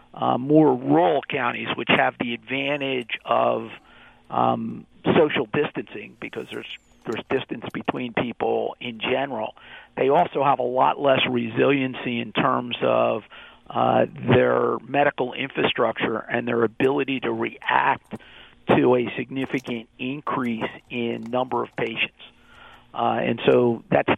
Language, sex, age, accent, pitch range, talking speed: English, male, 50-69, American, 115-135 Hz, 125 wpm